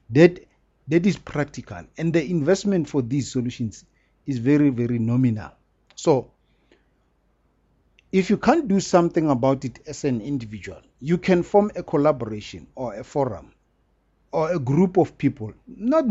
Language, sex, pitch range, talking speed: English, male, 120-155 Hz, 145 wpm